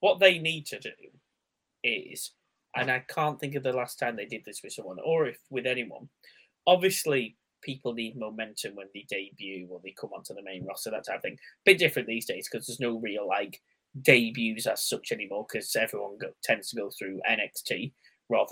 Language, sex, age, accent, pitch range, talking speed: English, male, 20-39, British, 115-155 Hz, 205 wpm